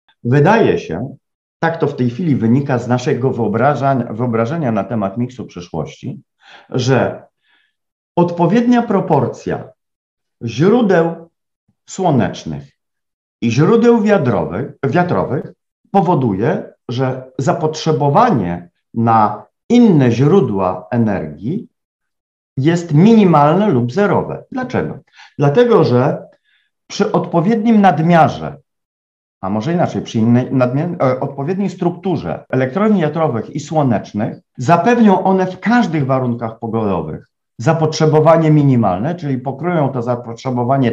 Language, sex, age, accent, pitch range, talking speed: Polish, male, 50-69, native, 125-190 Hz, 90 wpm